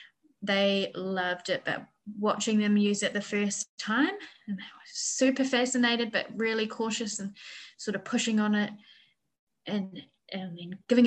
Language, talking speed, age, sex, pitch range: English, 150 wpm, 10-29, female, 195-235 Hz